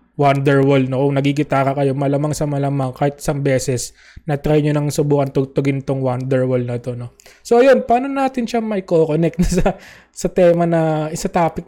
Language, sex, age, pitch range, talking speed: English, male, 20-39, 145-200 Hz, 185 wpm